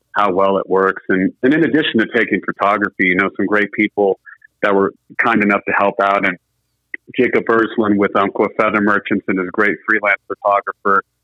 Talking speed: 185 wpm